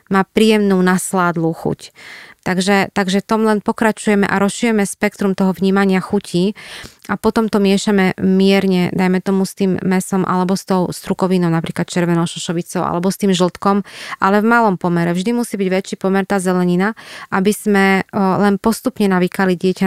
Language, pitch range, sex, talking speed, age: Slovak, 180-205 Hz, female, 155 wpm, 20-39